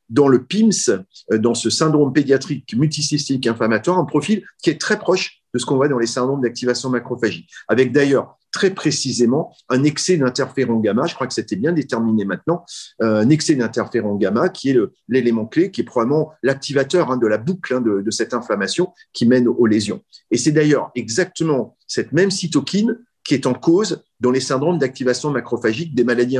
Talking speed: 180 wpm